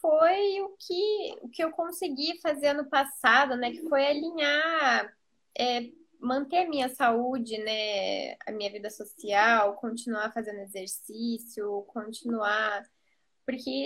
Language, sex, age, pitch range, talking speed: Portuguese, female, 10-29, 230-285 Hz, 115 wpm